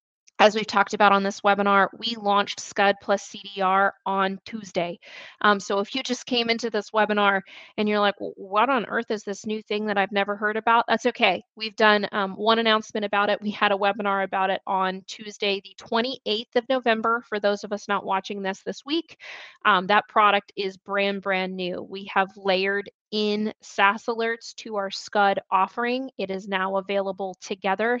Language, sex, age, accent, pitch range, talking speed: English, female, 20-39, American, 195-215 Hz, 195 wpm